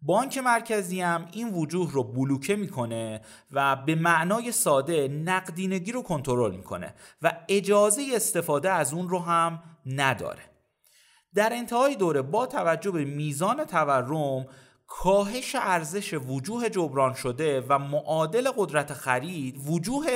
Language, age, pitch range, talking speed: Persian, 30-49, 140-195 Hz, 125 wpm